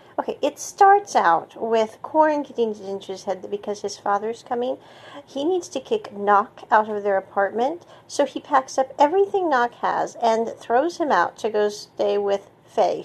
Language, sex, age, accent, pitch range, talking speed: English, female, 40-59, American, 210-280 Hz, 180 wpm